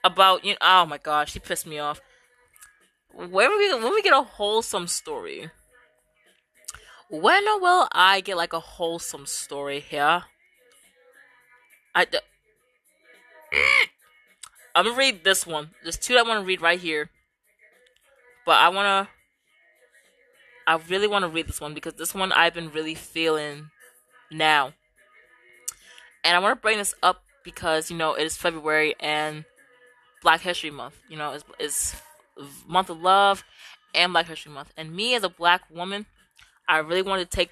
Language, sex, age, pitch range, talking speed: English, female, 20-39, 155-200 Hz, 160 wpm